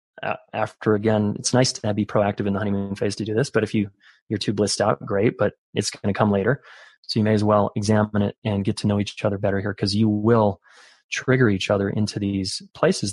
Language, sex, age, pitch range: English, male, 20-39, 100-115 Hz